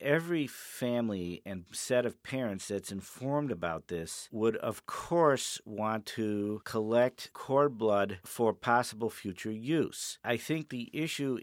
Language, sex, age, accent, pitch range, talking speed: English, male, 50-69, American, 95-120 Hz, 135 wpm